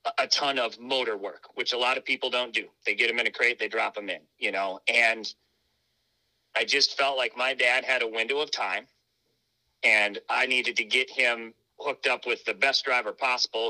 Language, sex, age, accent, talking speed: English, male, 40-59, American, 215 wpm